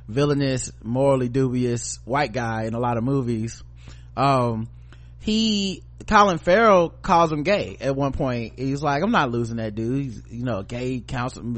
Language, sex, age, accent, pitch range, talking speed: English, male, 20-39, American, 115-145 Hz, 165 wpm